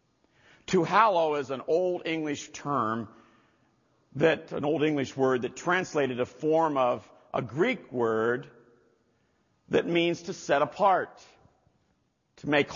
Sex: male